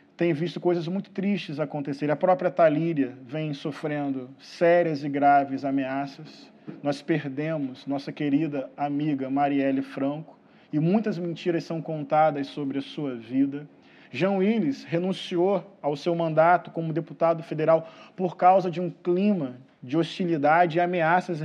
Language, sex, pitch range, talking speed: Portuguese, male, 150-185 Hz, 135 wpm